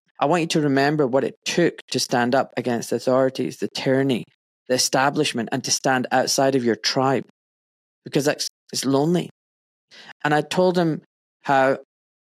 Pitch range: 125-150 Hz